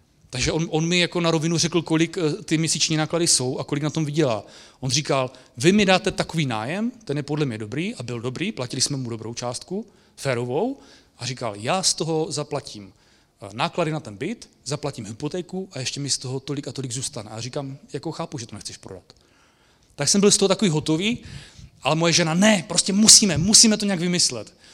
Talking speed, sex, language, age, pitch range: 205 wpm, male, English, 30-49, 135-180 Hz